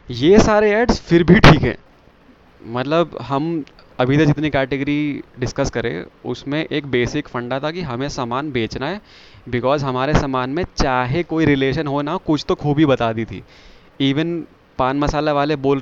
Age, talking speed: 20-39, 170 wpm